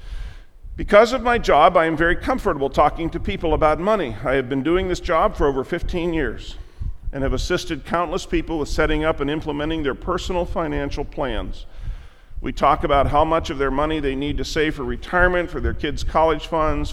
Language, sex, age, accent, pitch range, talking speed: English, male, 50-69, American, 130-165 Hz, 200 wpm